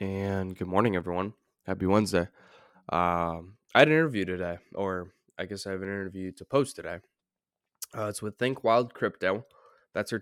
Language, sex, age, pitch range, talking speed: English, male, 10-29, 95-110 Hz, 175 wpm